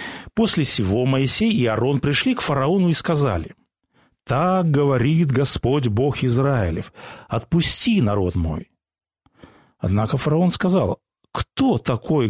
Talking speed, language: 110 wpm, Russian